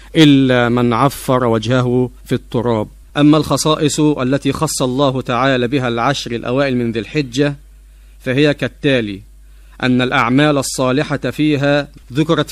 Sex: male